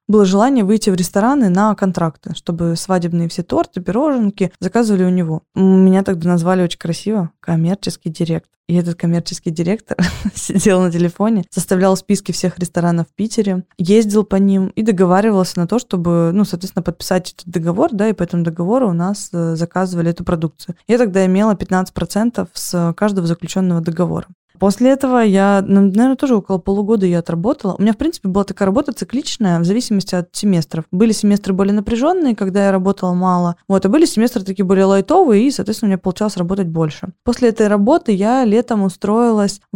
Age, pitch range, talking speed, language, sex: 20-39, 175-210 Hz, 175 wpm, Russian, female